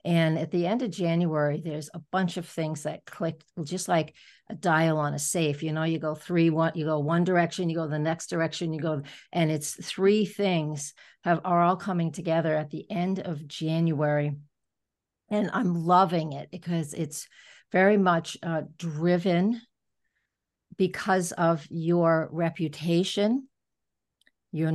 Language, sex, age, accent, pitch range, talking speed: English, female, 50-69, American, 150-175 Hz, 160 wpm